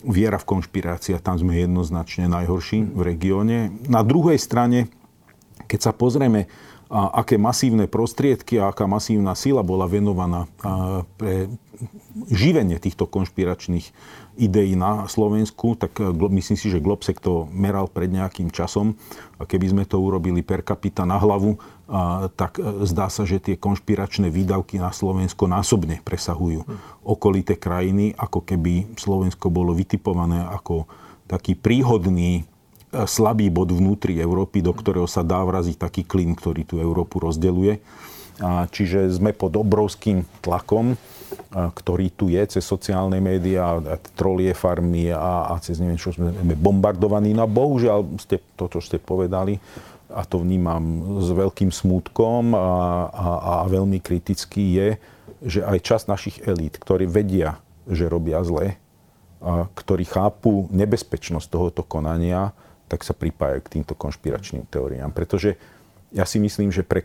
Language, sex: Slovak, male